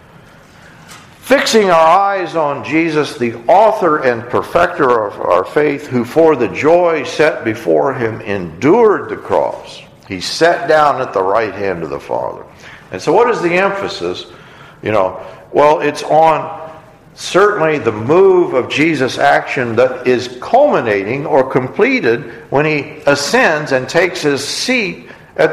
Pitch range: 130-170 Hz